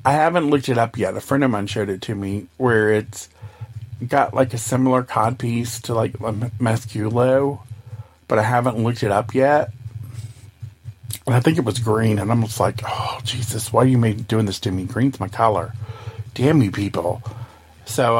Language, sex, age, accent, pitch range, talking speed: English, male, 40-59, American, 110-130 Hz, 190 wpm